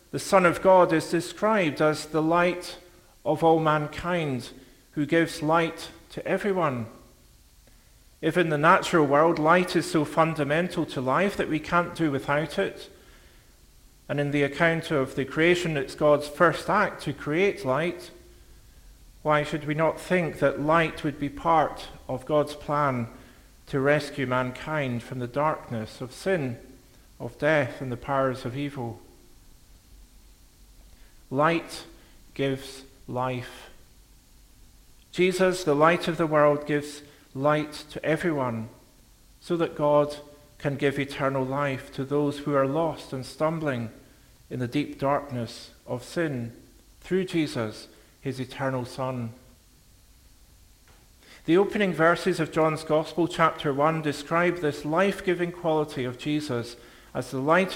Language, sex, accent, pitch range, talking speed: English, male, British, 130-160 Hz, 135 wpm